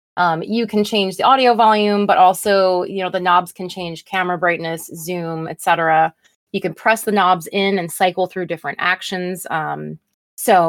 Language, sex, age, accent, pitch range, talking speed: English, female, 20-39, American, 175-205 Hz, 180 wpm